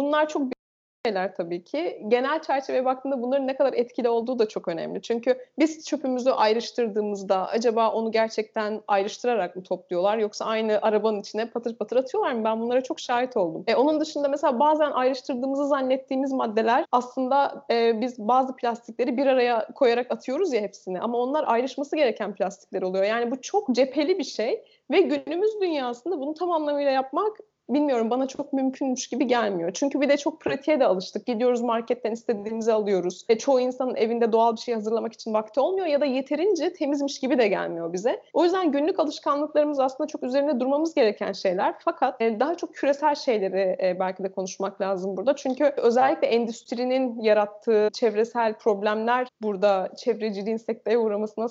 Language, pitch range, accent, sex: Turkish, 220-285 Hz, native, female